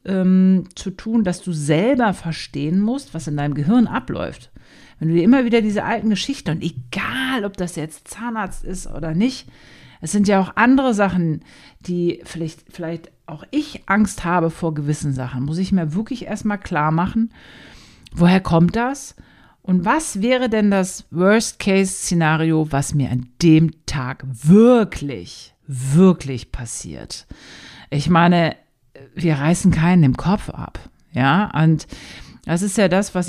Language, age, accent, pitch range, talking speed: German, 50-69, German, 155-215 Hz, 155 wpm